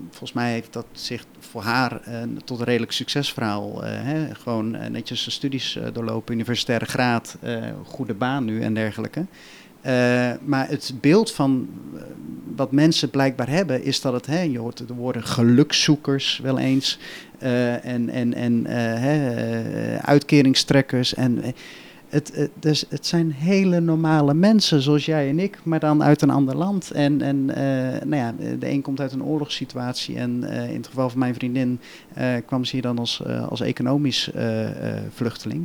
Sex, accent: male, Dutch